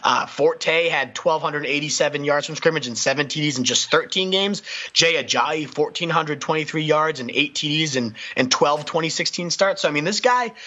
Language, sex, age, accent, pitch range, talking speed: English, male, 30-49, American, 130-165 Hz, 175 wpm